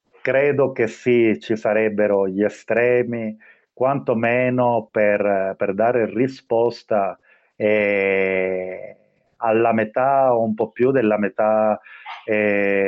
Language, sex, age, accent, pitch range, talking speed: Italian, male, 30-49, native, 105-125 Hz, 105 wpm